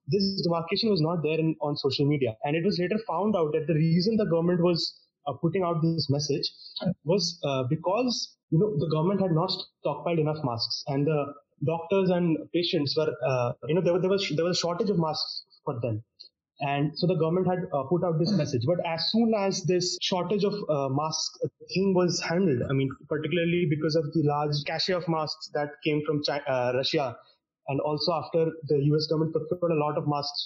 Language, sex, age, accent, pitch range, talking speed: English, male, 20-39, Indian, 150-185 Hz, 210 wpm